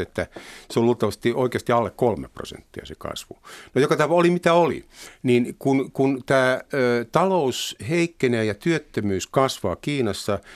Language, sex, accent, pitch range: Finnish, male, native, 110-135 Hz